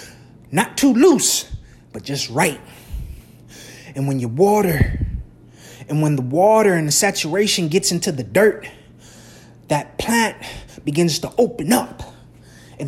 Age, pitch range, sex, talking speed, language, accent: 20-39, 165-235 Hz, male, 130 wpm, English, American